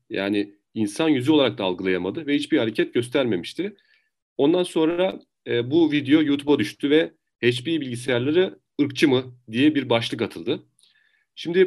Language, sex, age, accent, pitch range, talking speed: Turkish, male, 40-59, native, 125-190 Hz, 140 wpm